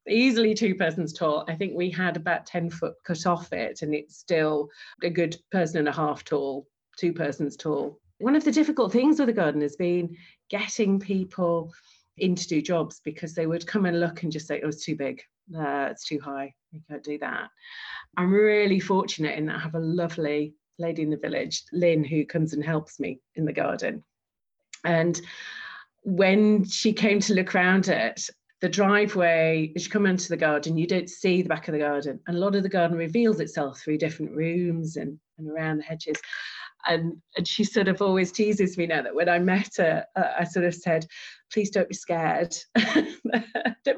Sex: female